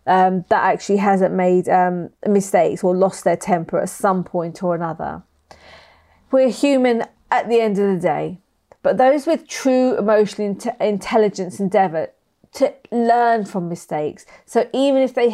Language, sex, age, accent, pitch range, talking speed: English, female, 40-59, British, 180-235 Hz, 155 wpm